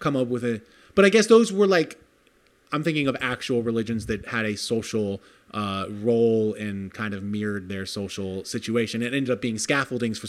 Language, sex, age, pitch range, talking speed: English, male, 30-49, 115-155 Hz, 200 wpm